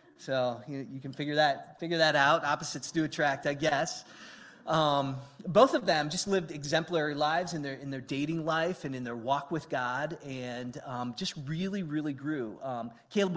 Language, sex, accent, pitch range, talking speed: English, male, American, 135-165 Hz, 190 wpm